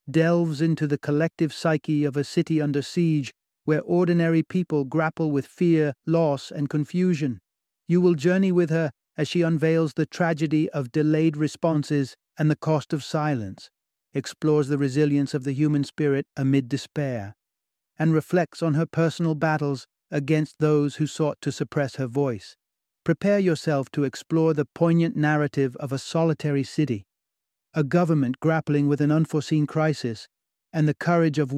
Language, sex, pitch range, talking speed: English, male, 140-160 Hz, 155 wpm